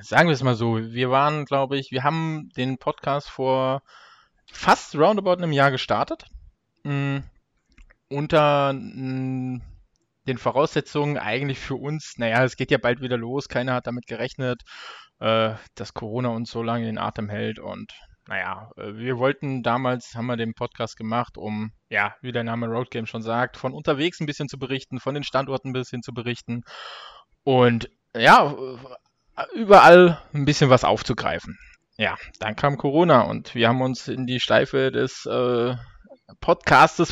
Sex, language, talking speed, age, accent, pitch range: male, German, 160 wpm, 20-39, German, 115-135 Hz